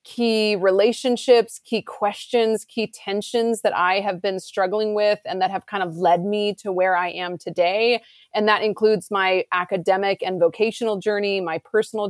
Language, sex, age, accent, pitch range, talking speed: English, female, 30-49, American, 190-215 Hz, 170 wpm